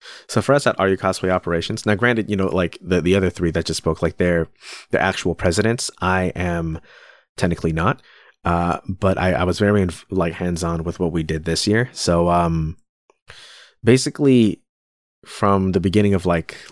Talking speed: 190 wpm